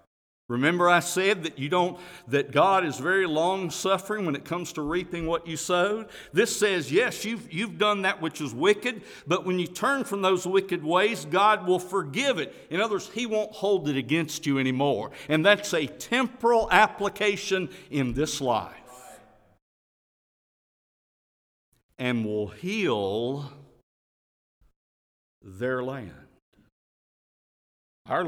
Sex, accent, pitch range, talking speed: male, American, 120-185 Hz, 140 wpm